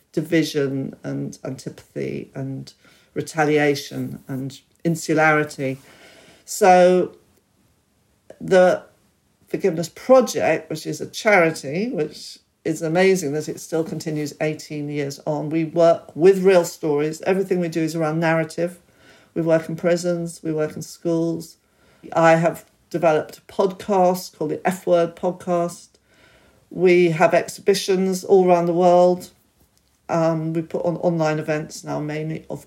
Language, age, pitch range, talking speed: English, 50-69, 155-185 Hz, 130 wpm